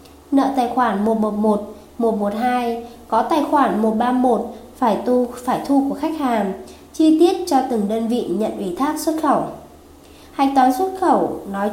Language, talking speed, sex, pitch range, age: Vietnamese, 160 wpm, female, 225-275 Hz, 20-39